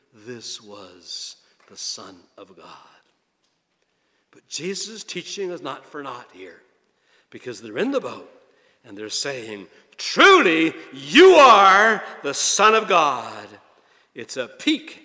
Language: English